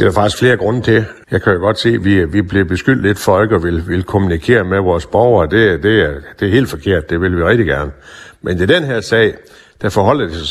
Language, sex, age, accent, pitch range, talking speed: Danish, male, 60-79, native, 85-110 Hz, 265 wpm